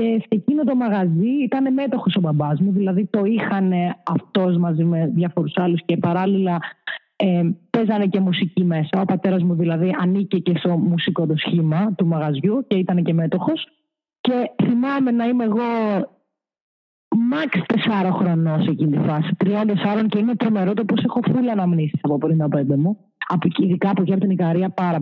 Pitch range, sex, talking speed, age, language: 175-220 Hz, female, 180 wpm, 20-39, Greek